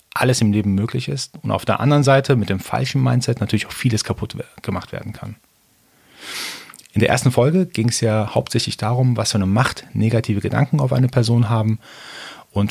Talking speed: 195 wpm